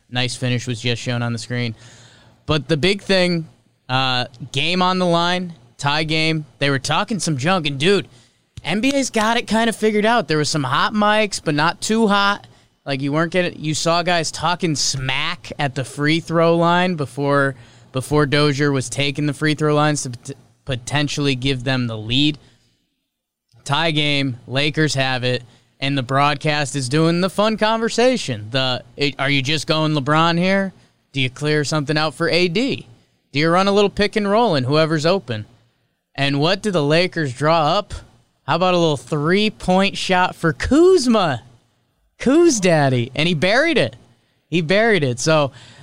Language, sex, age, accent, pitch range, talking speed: English, male, 20-39, American, 125-170 Hz, 180 wpm